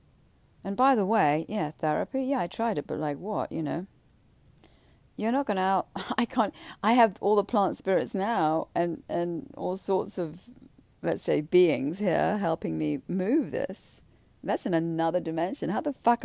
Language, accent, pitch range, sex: English, British, 150-235 Hz, female